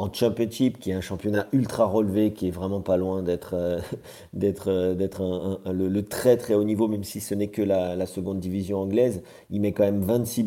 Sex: male